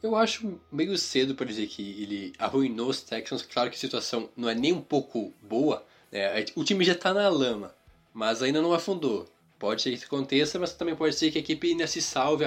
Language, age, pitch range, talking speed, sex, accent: Portuguese, 20-39, 120-155 Hz, 230 wpm, male, Brazilian